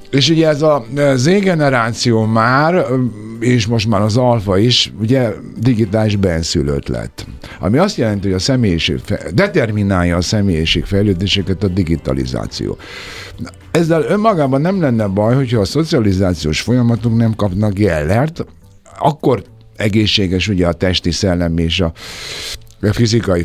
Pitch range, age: 85-125 Hz, 60-79